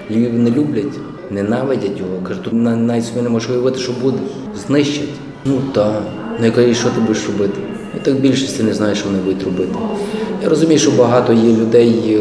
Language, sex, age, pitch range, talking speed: Ukrainian, male, 20-39, 105-120 Hz, 185 wpm